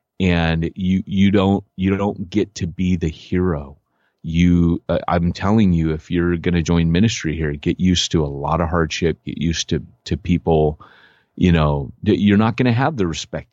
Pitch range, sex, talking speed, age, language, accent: 85-110 Hz, male, 195 wpm, 30-49, English, American